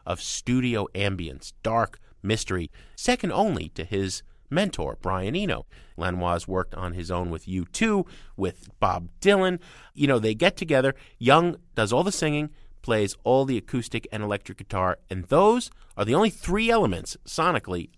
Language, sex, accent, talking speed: English, male, American, 155 wpm